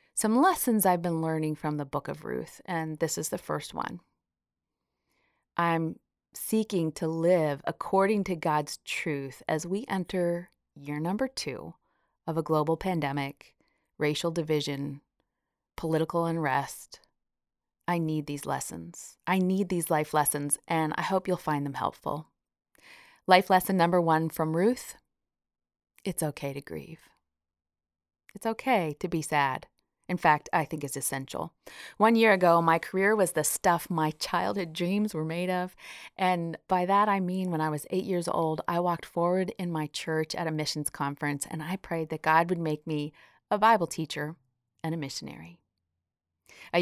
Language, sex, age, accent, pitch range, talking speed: English, female, 30-49, American, 150-180 Hz, 160 wpm